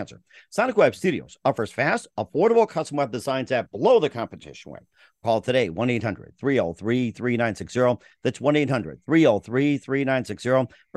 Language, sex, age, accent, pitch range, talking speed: English, male, 50-69, American, 115-155 Hz, 110 wpm